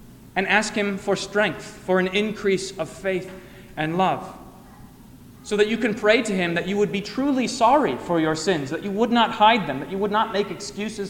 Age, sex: 30-49, male